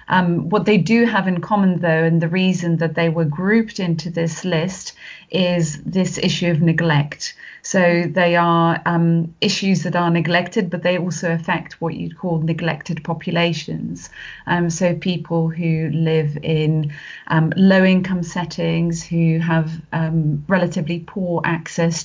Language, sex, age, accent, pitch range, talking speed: English, female, 30-49, British, 160-180 Hz, 150 wpm